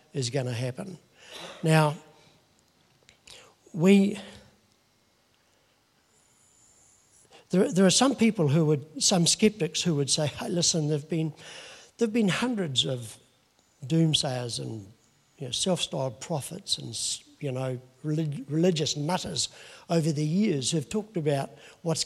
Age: 60-79